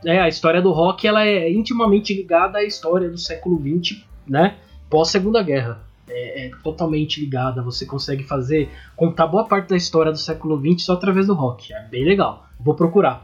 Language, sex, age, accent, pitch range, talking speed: Portuguese, male, 20-39, Brazilian, 145-210 Hz, 190 wpm